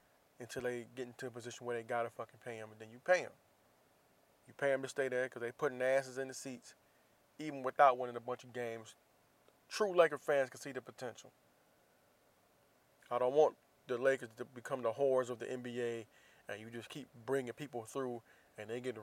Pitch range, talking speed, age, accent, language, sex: 120-135 Hz, 210 wpm, 20-39, American, English, male